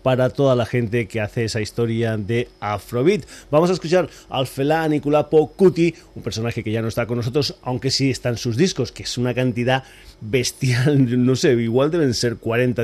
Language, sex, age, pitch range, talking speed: Spanish, male, 30-49, 115-135 Hz, 190 wpm